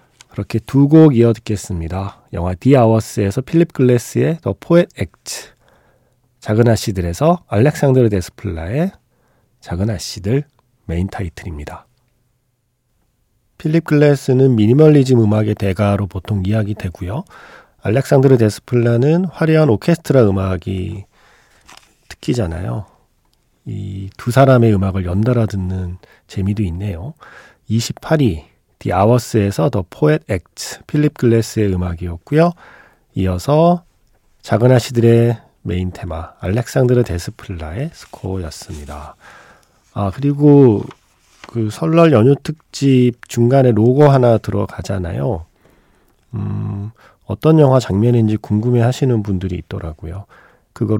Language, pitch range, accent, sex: Korean, 100-135 Hz, native, male